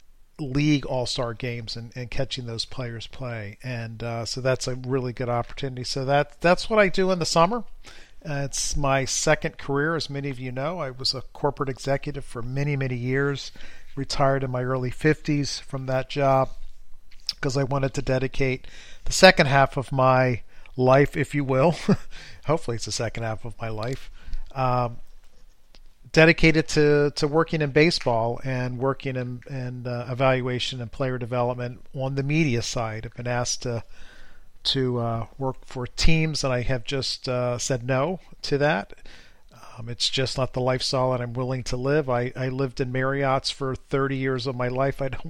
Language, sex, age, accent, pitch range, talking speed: English, male, 50-69, American, 125-140 Hz, 180 wpm